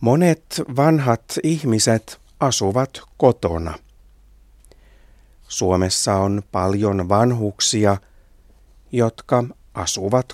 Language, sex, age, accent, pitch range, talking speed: Finnish, male, 60-79, native, 90-125 Hz, 65 wpm